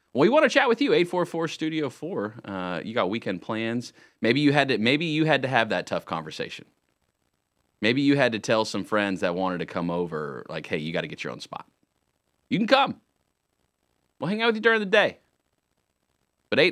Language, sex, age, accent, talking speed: English, male, 30-49, American, 210 wpm